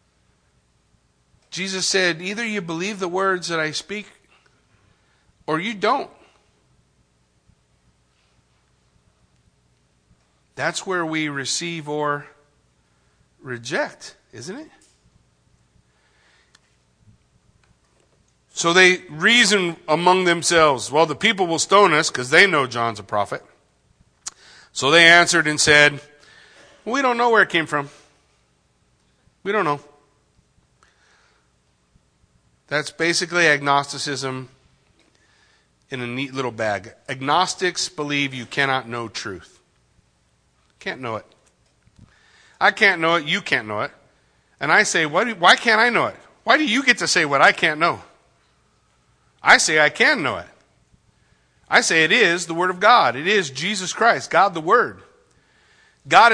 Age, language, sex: 50-69, English, male